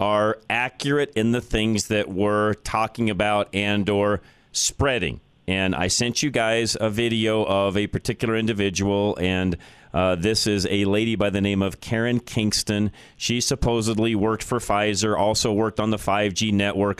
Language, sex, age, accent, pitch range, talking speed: English, male, 30-49, American, 100-115 Hz, 160 wpm